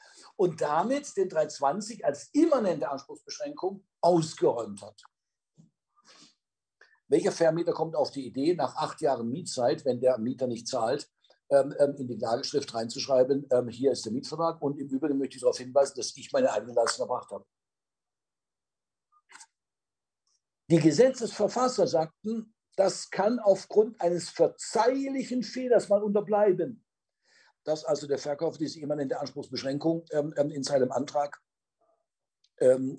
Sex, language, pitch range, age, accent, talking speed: male, German, 130-205 Hz, 60-79, German, 130 wpm